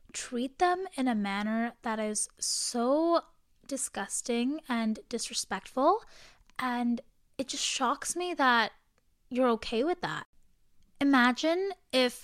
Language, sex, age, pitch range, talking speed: English, female, 10-29, 220-275 Hz, 115 wpm